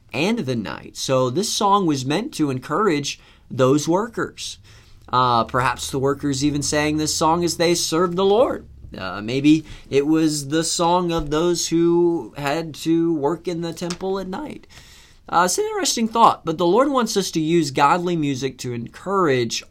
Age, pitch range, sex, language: 30-49, 115-160 Hz, male, English